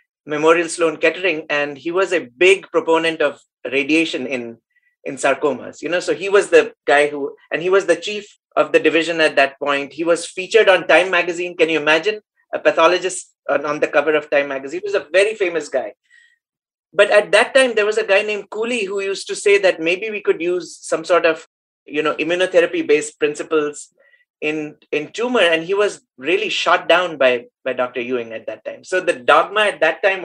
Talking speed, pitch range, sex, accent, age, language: 210 wpm, 155-220 Hz, male, Indian, 30-49, English